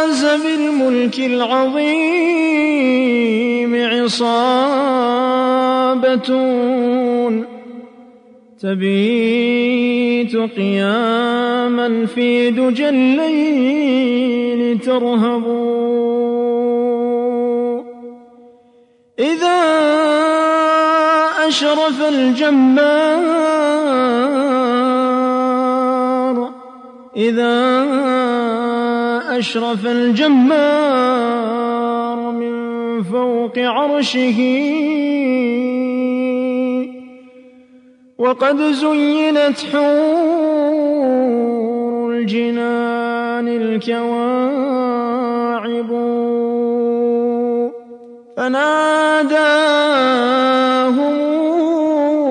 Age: 30-49